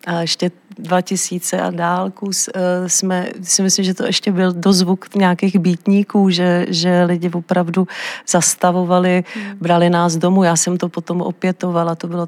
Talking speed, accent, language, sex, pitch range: 145 wpm, native, Czech, female, 175-190 Hz